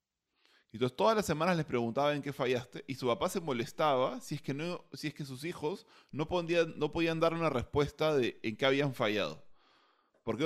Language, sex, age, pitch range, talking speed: Spanish, male, 20-39, 125-165 Hz, 190 wpm